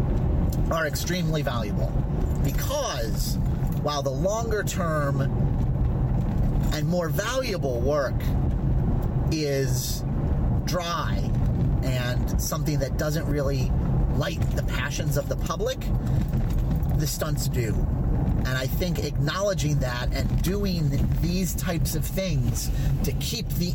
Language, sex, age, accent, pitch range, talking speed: English, male, 30-49, American, 125-150 Hz, 105 wpm